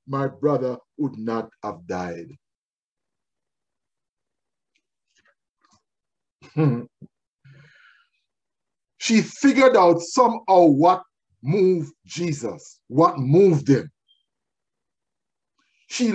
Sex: male